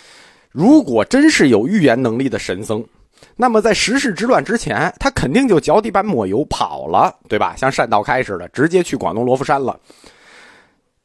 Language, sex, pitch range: Chinese, male, 120-175 Hz